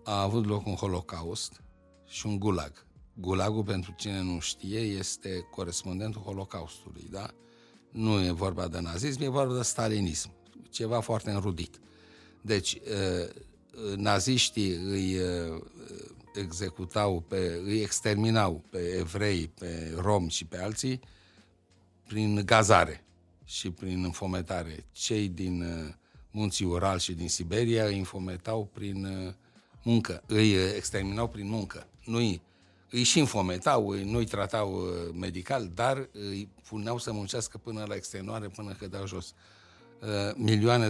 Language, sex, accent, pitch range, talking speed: Romanian, male, native, 90-110 Hz, 120 wpm